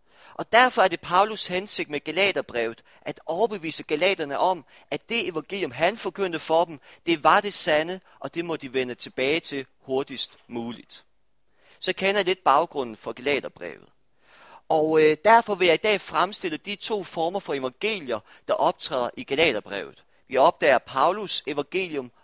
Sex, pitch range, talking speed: male, 135-195 Hz, 160 wpm